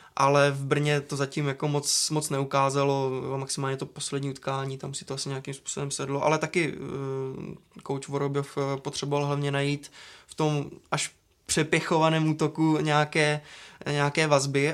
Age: 20-39